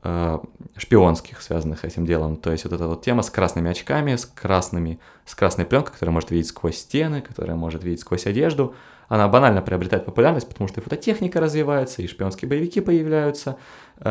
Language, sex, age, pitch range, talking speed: Russian, male, 20-39, 90-120 Hz, 175 wpm